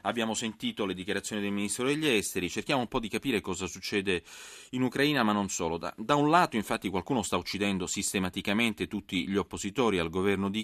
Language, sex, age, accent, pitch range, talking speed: Italian, male, 30-49, native, 90-110 Hz, 195 wpm